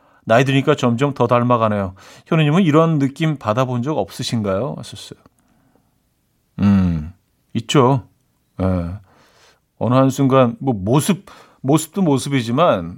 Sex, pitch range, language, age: male, 110-150 Hz, Korean, 40-59